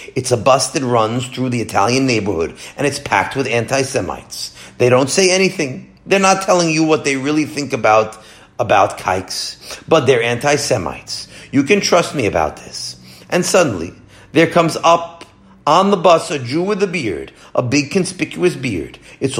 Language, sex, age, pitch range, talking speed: English, male, 40-59, 120-170 Hz, 175 wpm